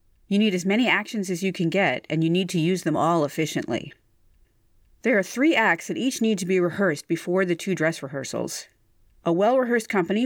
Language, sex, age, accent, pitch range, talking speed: English, female, 40-59, American, 165-225 Hz, 205 wpm